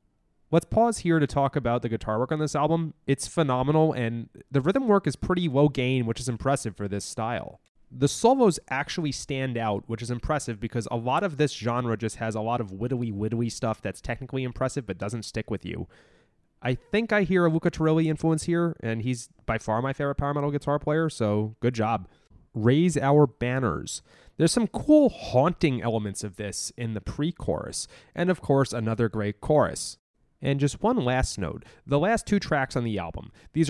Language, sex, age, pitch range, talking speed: English, male, 20-39, 110-150 Hz, 200 wpm